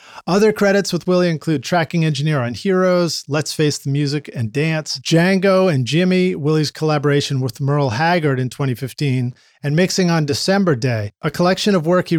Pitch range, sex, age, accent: 135-170 Hz, male, 40-59, American